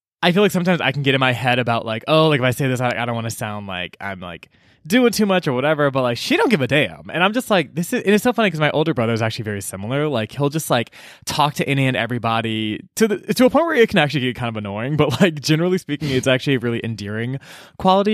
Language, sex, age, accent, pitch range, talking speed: English, male, 20-39, American, 110-150 Hz, 295 wpm